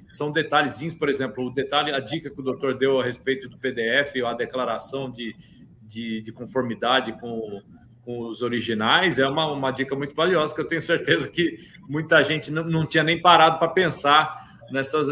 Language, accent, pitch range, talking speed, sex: Portuguese, Brazilian, 120-145 Hz, 185 wpm, male